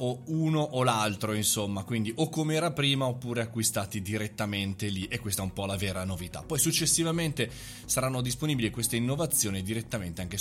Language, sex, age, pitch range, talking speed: Italian, male, 20-39, 105-135 Hz, 175 wpm